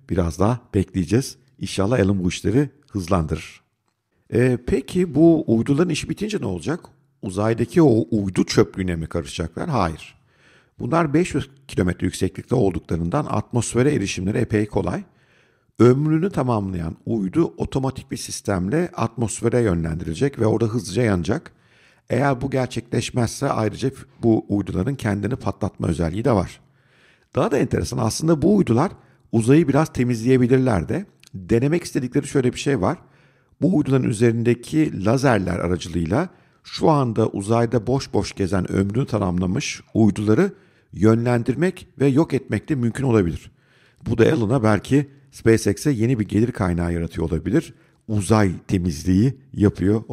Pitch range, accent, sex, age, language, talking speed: 100-135 Hz, native, male, 50-69, Turkish, 125 wpm